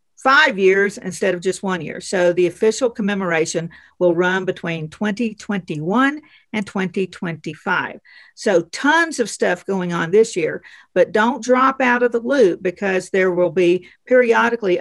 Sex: female